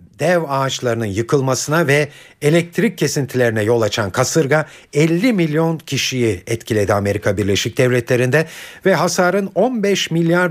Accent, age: native, 50-69